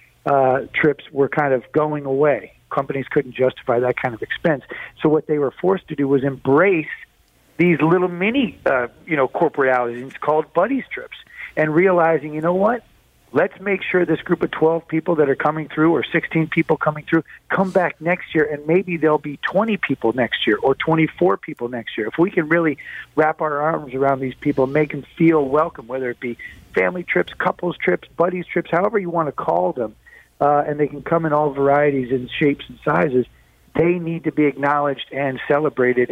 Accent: American